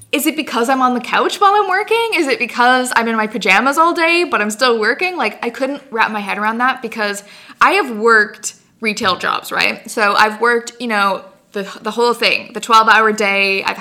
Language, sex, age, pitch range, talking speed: English, female, 20-39, 195-230 Hz, 225 wpm